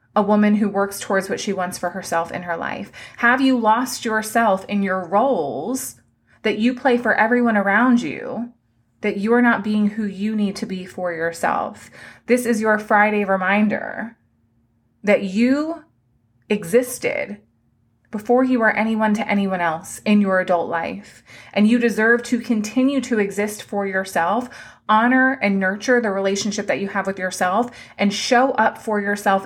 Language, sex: English, female